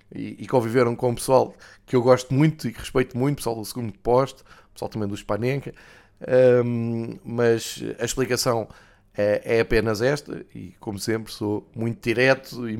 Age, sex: 20-39, male